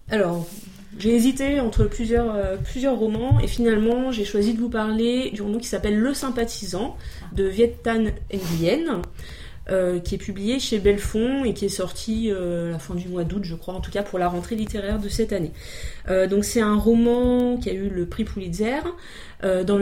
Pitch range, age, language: 175-230 Hz, 30-49, French